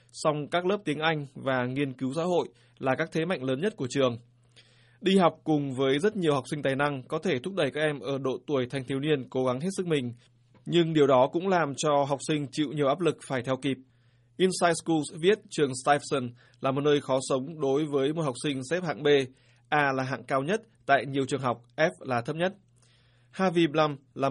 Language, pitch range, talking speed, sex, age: Vietnamese, 130-150 Hz, 230 wpm, male, 20-39